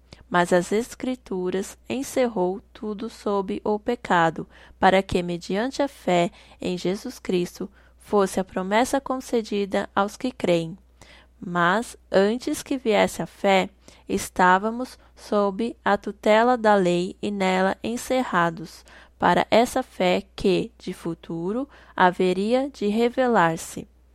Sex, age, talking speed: female, 10-29, 115 wpm